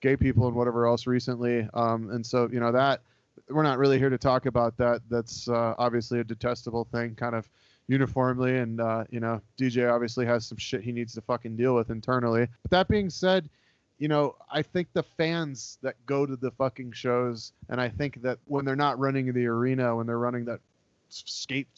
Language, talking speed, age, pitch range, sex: English, 210 wpm, 30-49, 120-150 Hz, male